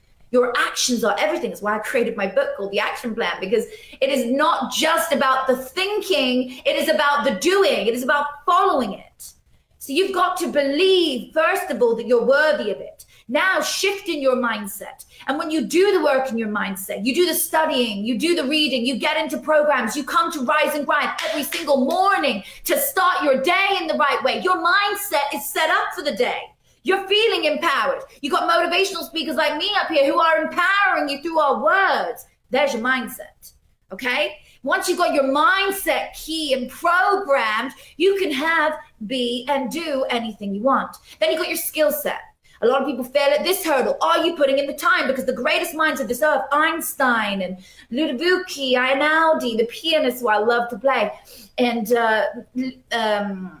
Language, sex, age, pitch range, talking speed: English, female, 30-49, 255-330 Hz, 195 wpm